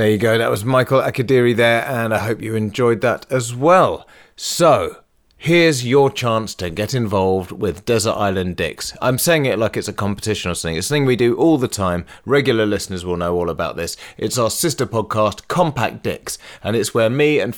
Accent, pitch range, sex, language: British, 105-130 Hz, male, English